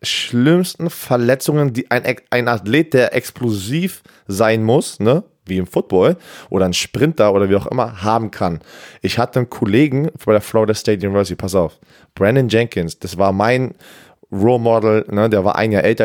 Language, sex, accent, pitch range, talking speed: German, male, German, 100-120 Hz, 170 wpm